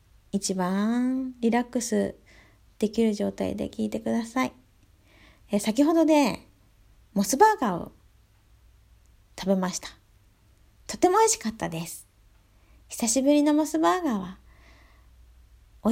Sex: female